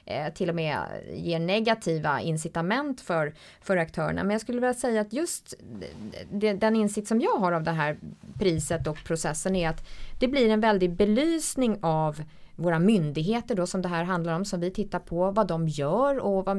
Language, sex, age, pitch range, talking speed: English, female, 20-39, 170-225 Hz, 190 wpm